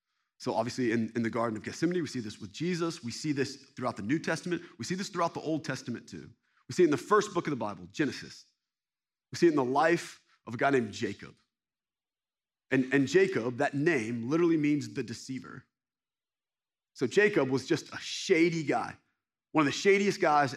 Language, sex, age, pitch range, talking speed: English, male, 30-49, 120-160 Hz, 205 wpm